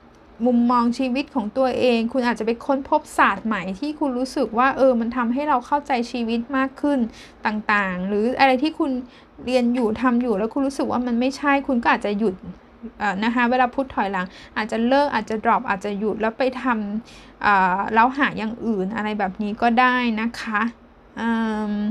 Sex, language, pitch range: female, Thai, 215-265 Hz